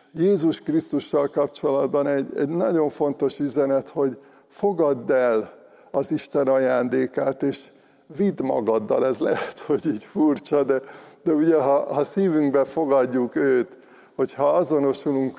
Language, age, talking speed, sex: Hungarian, 60-79, 125 wpm, male